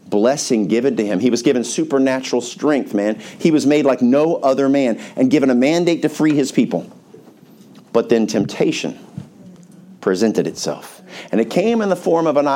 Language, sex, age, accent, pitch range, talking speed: English, male, 50-69, American, 115-150 Hz, 180 wpm